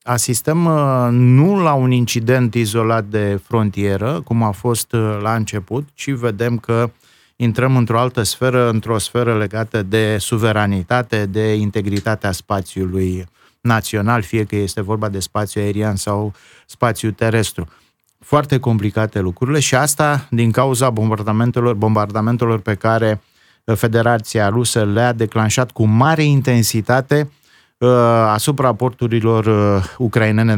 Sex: male